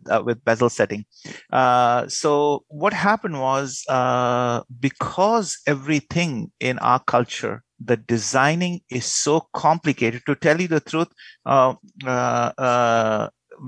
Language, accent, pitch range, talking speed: English, Indian, 130-165 Hz, 125 wpm